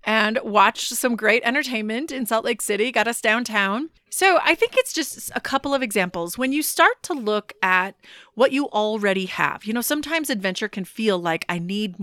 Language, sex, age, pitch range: English, female, 30-49, 190-235 Hz